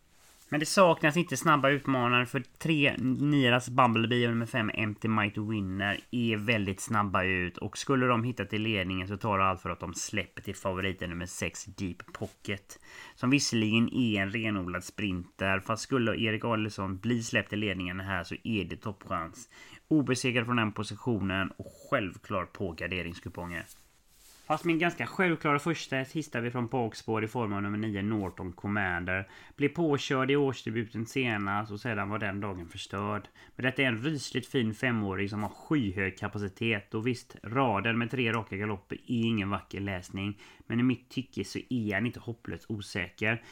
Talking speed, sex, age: 170 wpm, male, 30-49